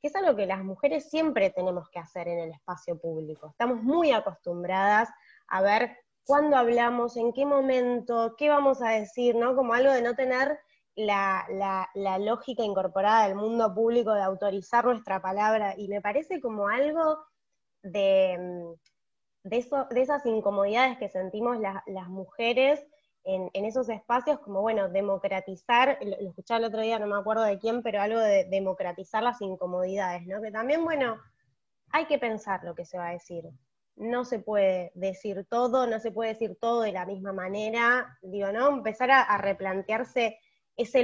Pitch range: 195-255 Hz